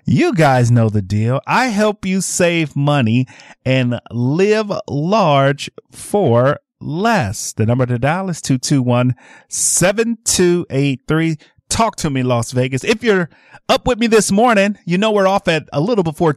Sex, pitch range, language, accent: male, 115-175 Hz, English, American